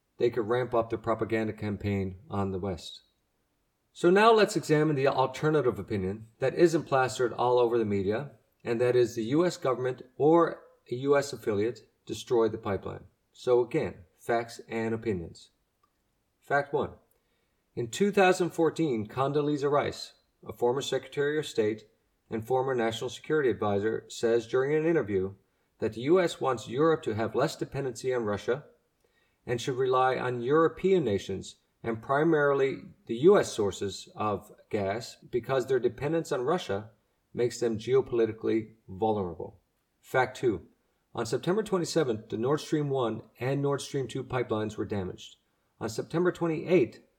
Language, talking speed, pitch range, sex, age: English, 145 wpm, 110-150 Hz, male, 40-59